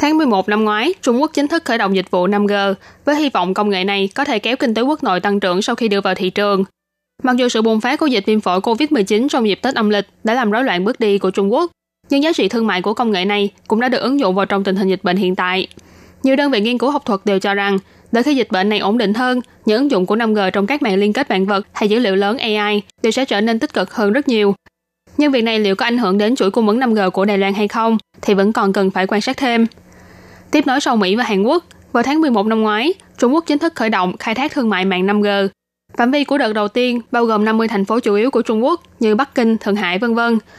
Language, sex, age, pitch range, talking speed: Vietnamese, female, 10-29, 200-245 Hz, 290 wpm